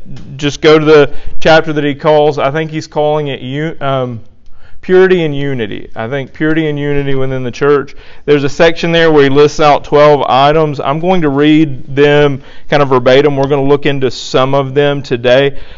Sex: male